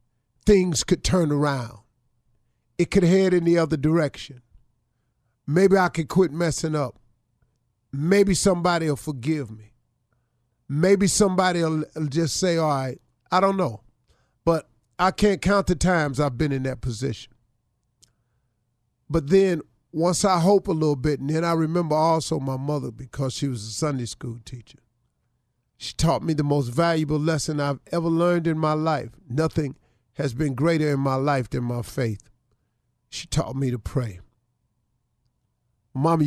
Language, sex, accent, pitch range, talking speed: English, male, American, 120-160 Hz, 155 wpm